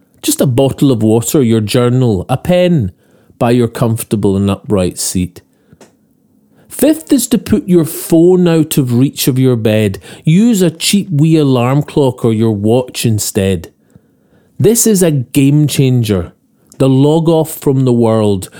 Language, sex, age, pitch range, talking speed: English, male, 40-59, 110-160 Hz, 155 wpm